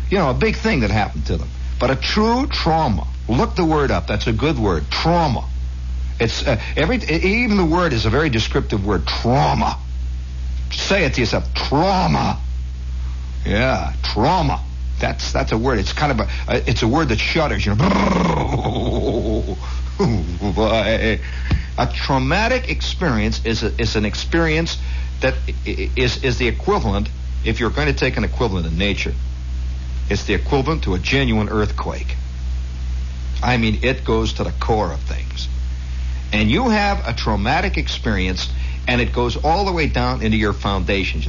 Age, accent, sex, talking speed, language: 60-79, American, male, 160 wpm, English